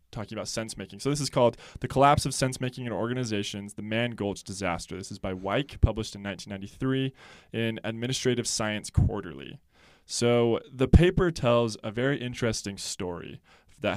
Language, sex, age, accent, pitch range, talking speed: English, male, 20-39, American, 100-120 Hz, 165 wpm